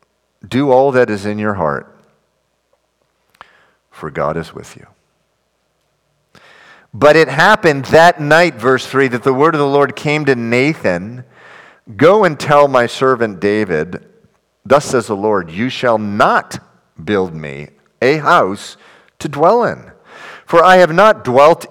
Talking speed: 145 wpm